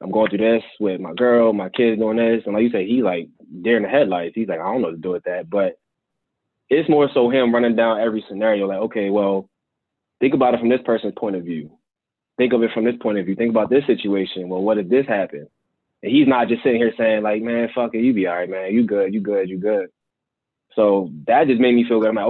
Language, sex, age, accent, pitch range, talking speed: English, male, 20-39, American, 100-120 Hz, 270 wpm